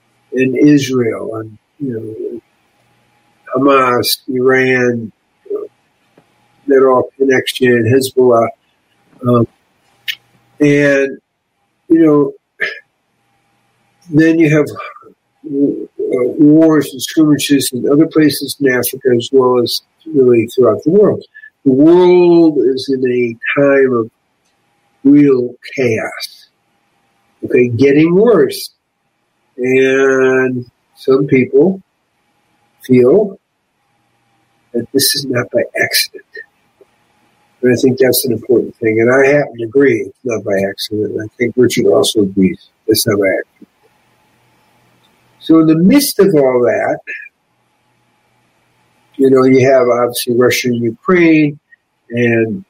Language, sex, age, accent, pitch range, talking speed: English, male, 60-79, American, 115-145 Hz, 115 wpm